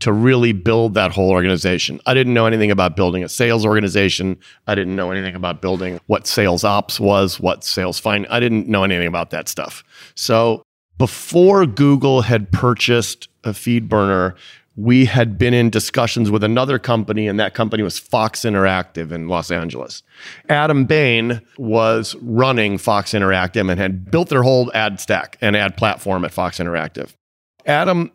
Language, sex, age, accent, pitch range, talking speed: English, male, 30-49, American, 95-125 Hz, 170 wpm